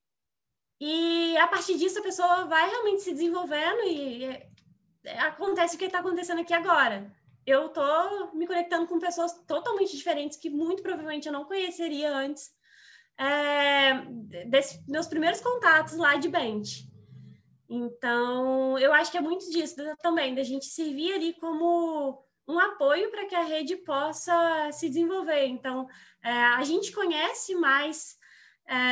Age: 20-39